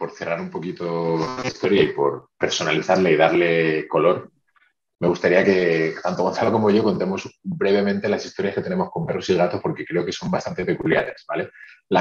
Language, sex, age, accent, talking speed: Spanish, male, 30-49, Spanish, 185 wpm